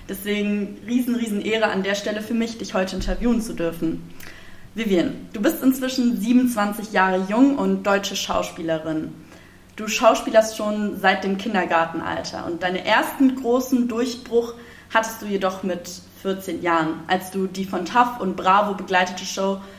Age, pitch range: 20-39, 185-230 Hz